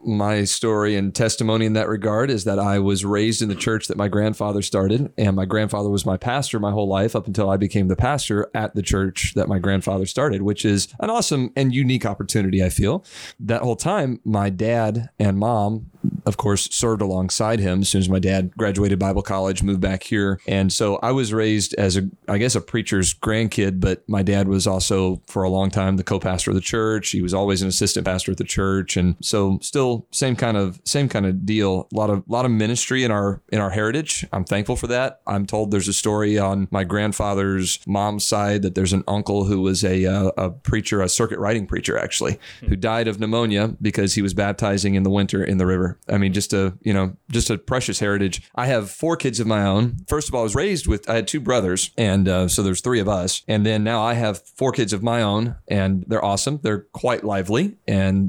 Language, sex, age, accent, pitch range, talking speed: English, male, 30-49, American, 95-110 Hz, 230 wpm